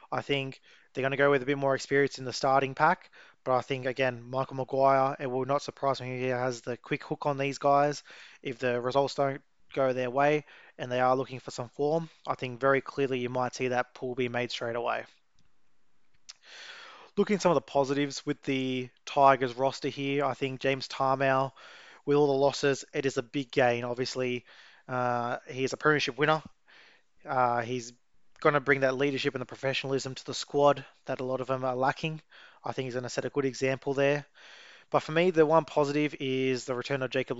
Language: English